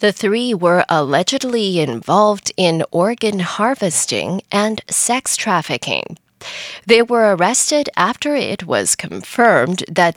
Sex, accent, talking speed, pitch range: female, American, 110 wpm, 170-240 Hz